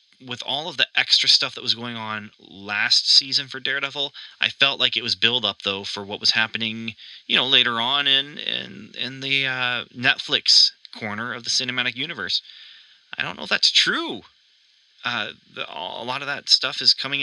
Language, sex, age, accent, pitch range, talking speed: English, male, 30-49, American, 105-125 Hz, 190 wpm